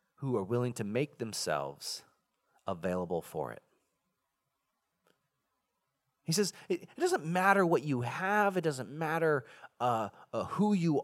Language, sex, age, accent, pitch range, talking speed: English, male, 30-49, American, 115-180 Hz, 130 wpm